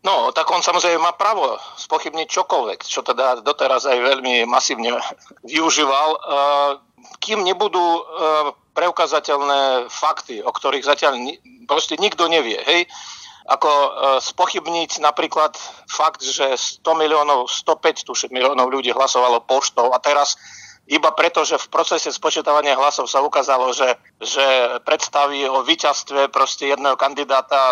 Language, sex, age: Slovak, male, 50-69